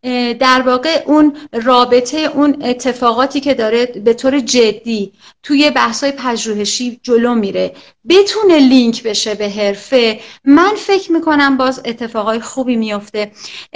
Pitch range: 220-305 Hz